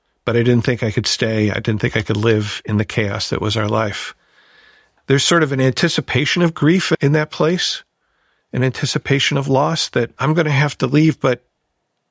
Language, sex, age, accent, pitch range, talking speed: English, male, 50-69, American, 105-135 Hz, 210 wpm